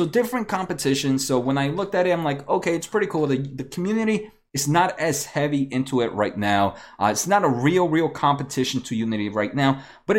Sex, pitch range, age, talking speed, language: male, 125-175 Hz, 30-49, 225 wpm, English